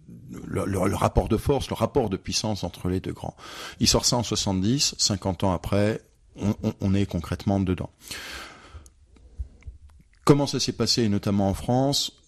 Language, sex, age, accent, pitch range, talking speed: French, male, 40-59, French, 90-105 Hz, 170 wpm